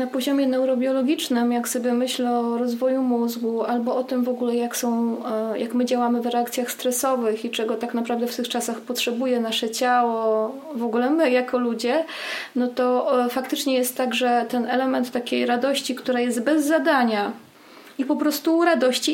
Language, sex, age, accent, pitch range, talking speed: Polish, female, 30-49, native, 235-270 Hz, 165 wpm